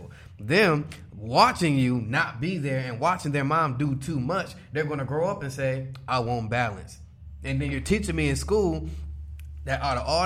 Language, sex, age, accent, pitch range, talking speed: English, male, 20-39, American, 120-150 Hz, 195 wpm